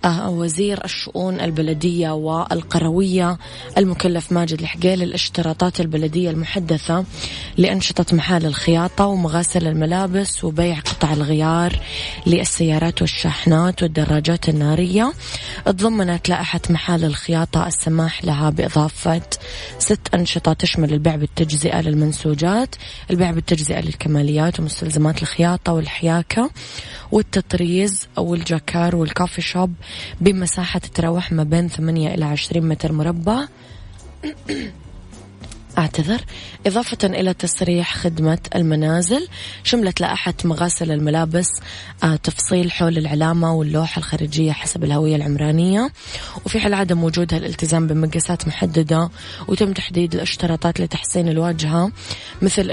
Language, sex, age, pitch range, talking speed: English, female, 20-39, 155-180 Hz, 95 wpm